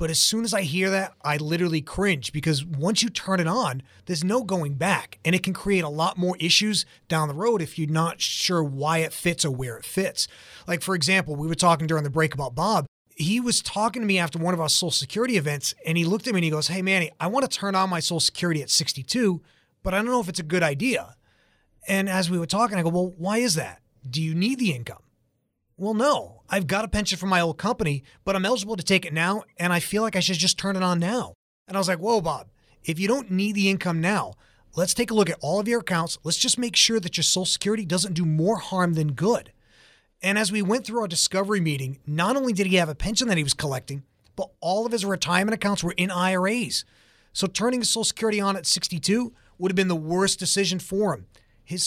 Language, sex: English, male